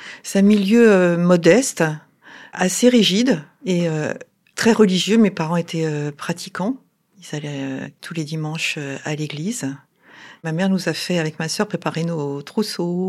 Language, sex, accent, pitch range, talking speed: French, female, French, 160-190 Hz, 165 wpm